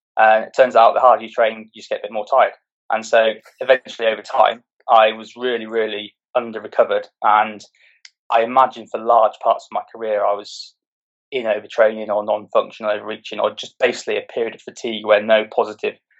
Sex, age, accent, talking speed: male, 20-39, British, 195 wpm